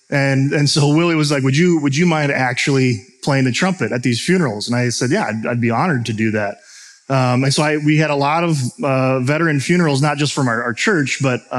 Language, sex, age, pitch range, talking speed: English, male, 30-49, 130-160 Hz, 250 wpm